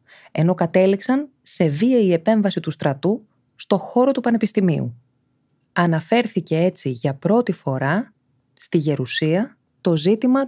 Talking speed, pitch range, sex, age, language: 120 wpm, 140-210 Hz, female, 20-39, Greek